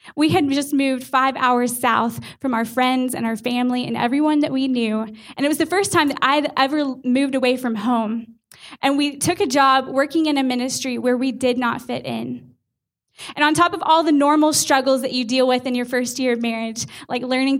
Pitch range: 245-300 Hz